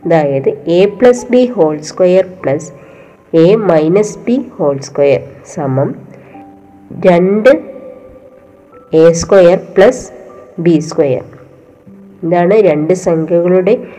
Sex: female